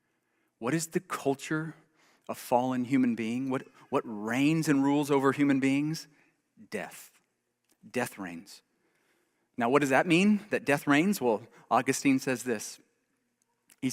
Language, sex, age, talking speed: English, male, 40-59, 140 wpm